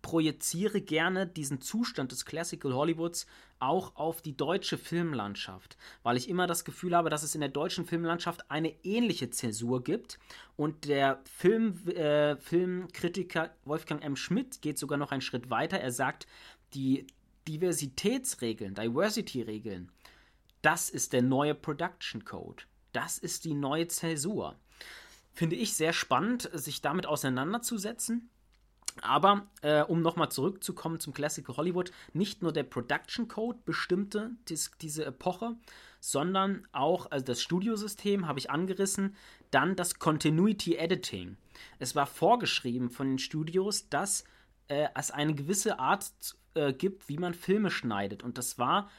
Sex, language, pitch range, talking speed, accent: male, German, 140-185 Hz, 140 wpm, German